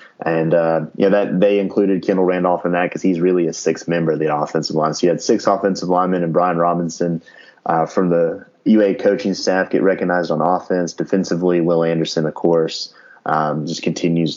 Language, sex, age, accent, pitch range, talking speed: English, male, 20-39, American, 85-95 Hz, 195 wpm